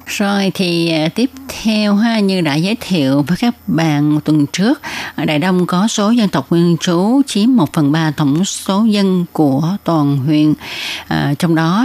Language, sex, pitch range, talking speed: Vietnamese, female, 155-200 Hz, 180 wpm